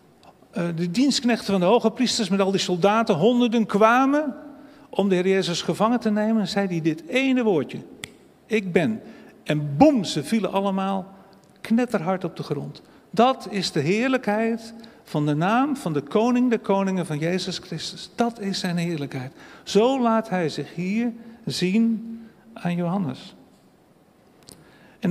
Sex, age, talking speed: male, 50-69, 155 wpm